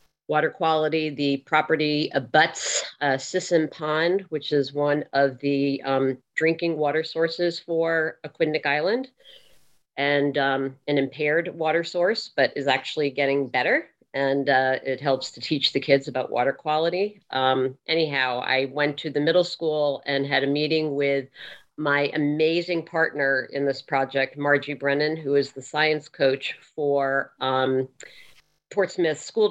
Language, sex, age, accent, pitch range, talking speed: English, female, 40-59, American, 140-160 Hz, 145 wpm